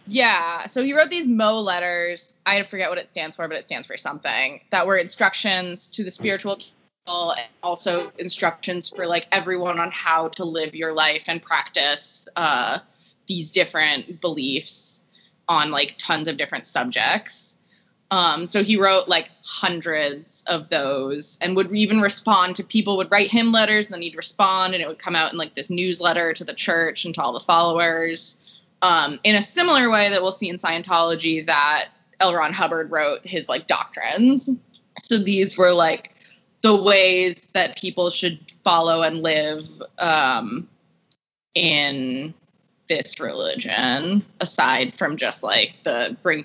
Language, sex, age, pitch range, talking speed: English, female, 20-39, 165-205 Hz, 165 wpm